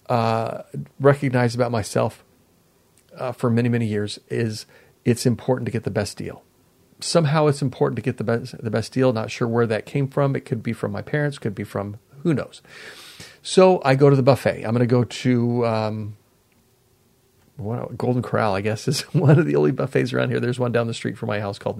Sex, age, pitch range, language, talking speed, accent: male, 40-59, 110-140 Hz, English, 210 wpm, American